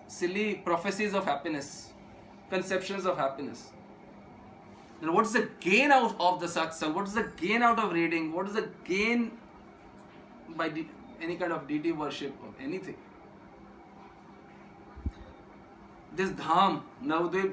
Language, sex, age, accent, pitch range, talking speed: Hindi, male, 20-39, native, 180-220 Hz, 130 wpm